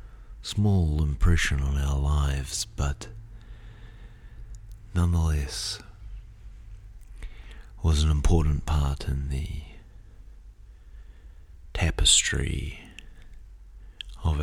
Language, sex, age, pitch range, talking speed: English, male, 40-59, 70-90 Hz, 60 wpm